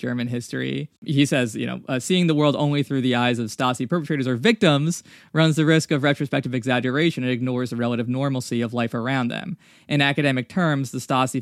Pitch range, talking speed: 125-150 Hz, 205 wpm